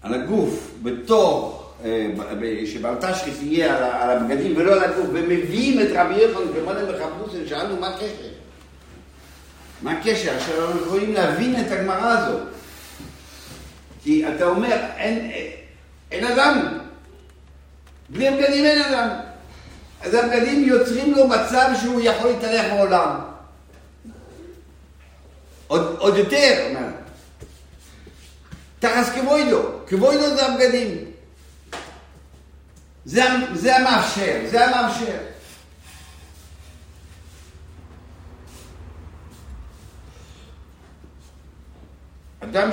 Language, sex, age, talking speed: Hebrew, male, 60-79, 90 wpm